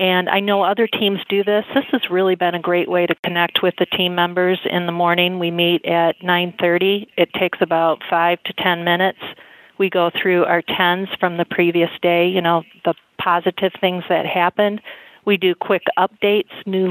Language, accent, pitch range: English, American, 170-195 Hz